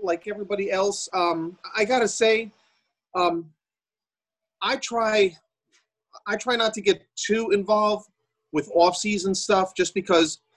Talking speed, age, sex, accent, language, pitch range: 125 wpm, 40-59, male, American, English, 140-200 Hz